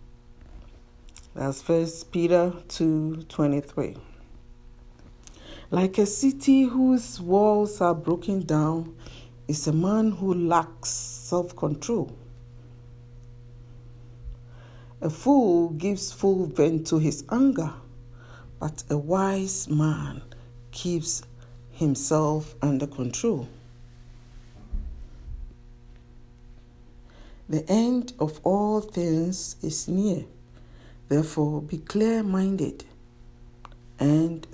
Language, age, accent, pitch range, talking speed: English, 60-79, Nigerian, 120-175 Hz, 80 wpm